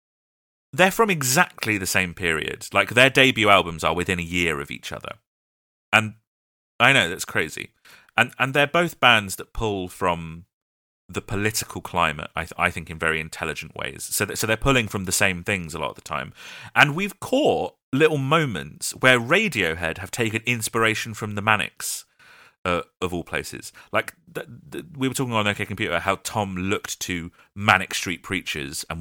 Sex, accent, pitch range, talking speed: male, British, 80-110 Hz, 180 wpm